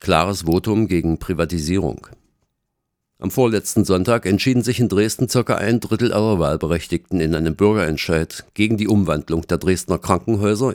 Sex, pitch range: male, 85-105 Hz